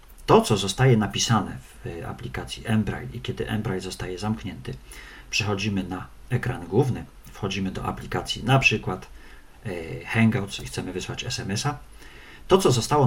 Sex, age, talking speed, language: male, 40-59, 135 wpm, Polish